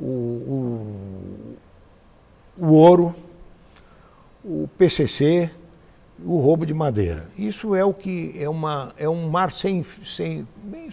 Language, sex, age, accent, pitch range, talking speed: English, male, 60-79, Brazilian, 125-185 Hz, 115 wpm